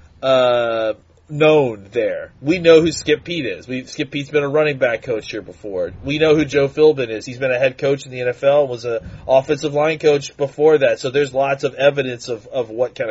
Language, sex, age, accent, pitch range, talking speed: English, male, 30-49, American, 125-155 Hz, 225 wpm